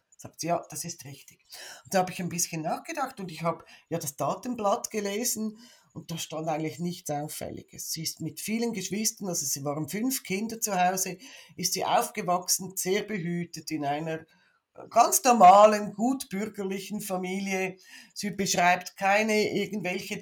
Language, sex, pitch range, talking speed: German, female, 165-205 Hz, 160 wpm